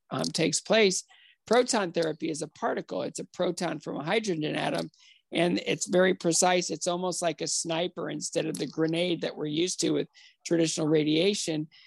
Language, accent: English, American